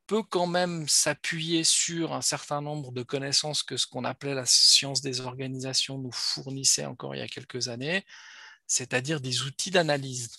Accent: French